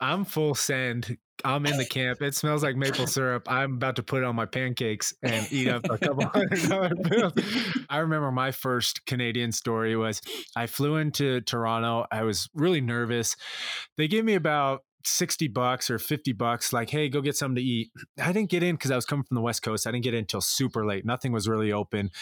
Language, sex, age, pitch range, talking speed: English, male, 20-39, 115-145 Hz, 220 wpm